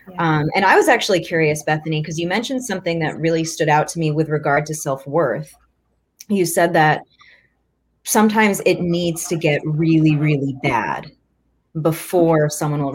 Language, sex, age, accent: English, female, 30-49, American